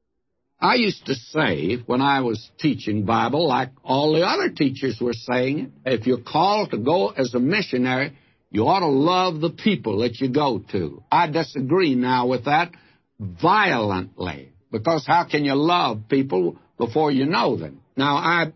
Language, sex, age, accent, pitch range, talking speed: English, male, 60-79, American, 130-165 Hz, 170 wpm